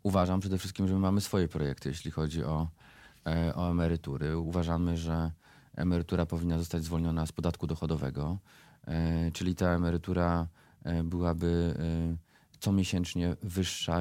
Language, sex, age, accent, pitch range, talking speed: Polish, male, 30-49, native, 85-100 Hz, 125 wpm